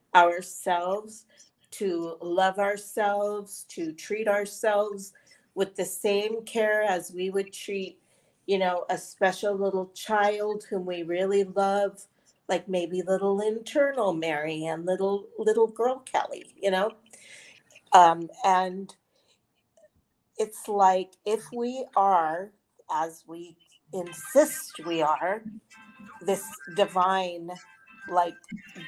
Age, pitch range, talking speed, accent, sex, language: 40-59, 180-215 Hz, 110 wpm, American, female, English